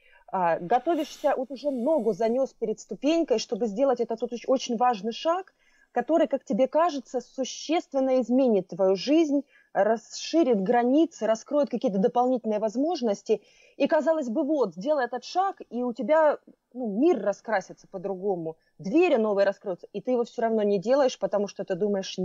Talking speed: 150 wpm